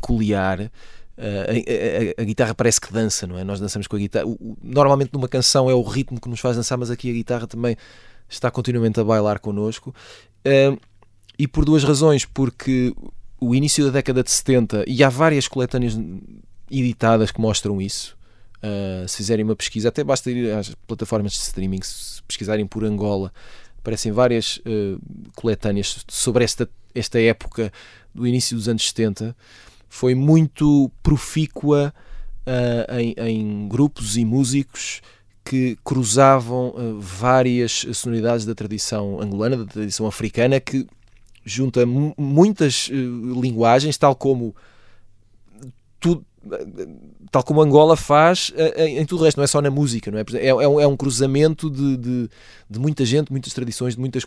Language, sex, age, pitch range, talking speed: Portuguese, male, 20-39, 105-135 Hz, 160 wpm